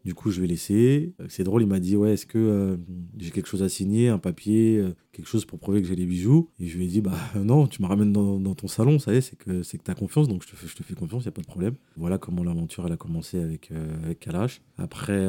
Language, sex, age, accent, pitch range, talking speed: French, male, 30-49, French, 85-105 Hz, 305 wpm